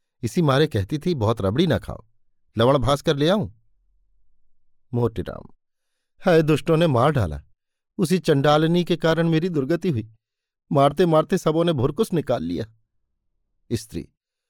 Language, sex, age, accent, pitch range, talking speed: Hindi, male, 50-69, native, 110-170 Hz, 140 wpm